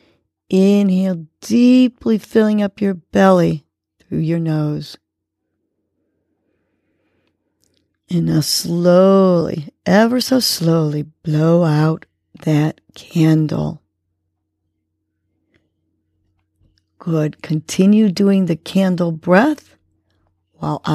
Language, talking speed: English, 75 wpm